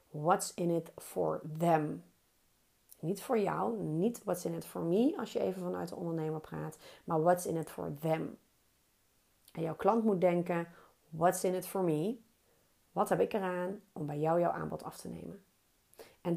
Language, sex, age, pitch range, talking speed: Dutch, female, 30-49, 170-220 Hz, 185 wpm